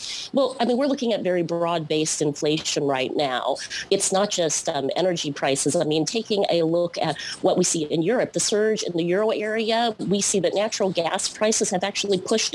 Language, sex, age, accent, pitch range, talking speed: English, female, 40-59, American, 160-195 Hz, 205 wpm